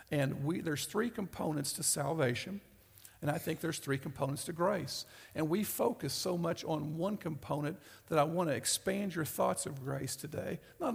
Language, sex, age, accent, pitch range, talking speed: English, male, 50-69, American, 140-180 Hz, 185 wpm